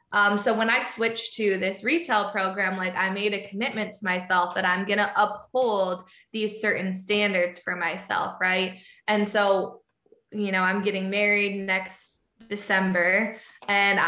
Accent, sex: American, female